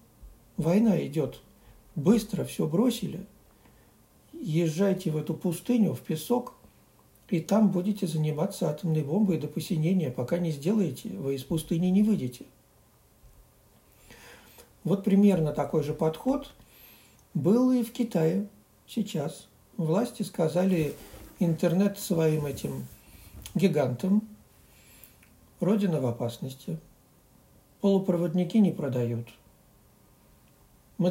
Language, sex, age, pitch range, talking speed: Russian, male, 60-79, 145-195 Hz, 95 wpm